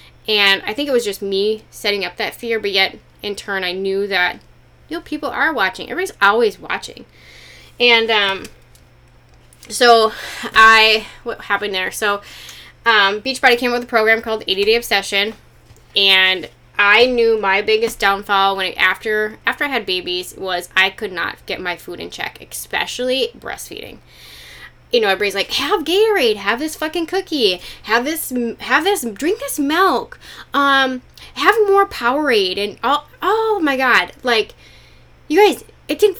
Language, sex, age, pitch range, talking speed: English, female, 10-29, 215-350 Hz, 165 wpm